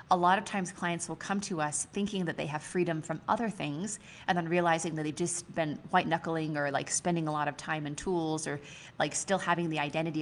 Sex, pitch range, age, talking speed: female, 155-190 Hz, 30-49, 240 wpm